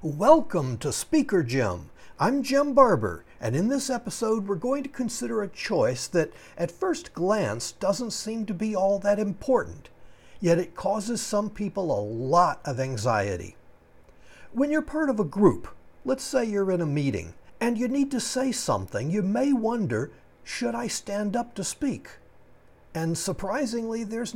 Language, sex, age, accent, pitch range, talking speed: English, male, 60-79, American, 155-230 Hz, 165 wpm